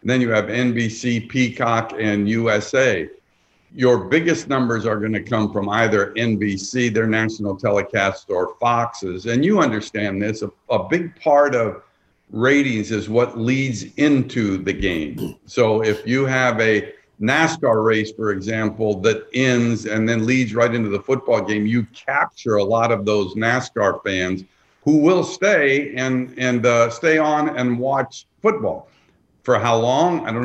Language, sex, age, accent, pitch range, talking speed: English, male, 50-69, American, 110-140 Hz, 160 wpm